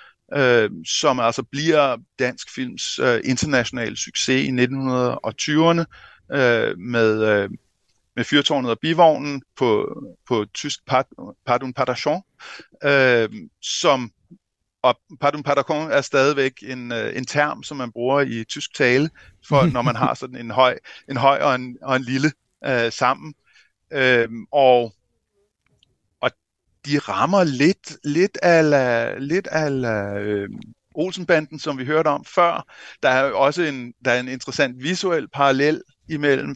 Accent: native